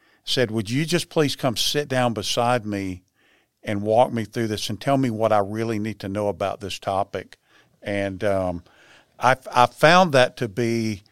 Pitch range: 105-125 Hz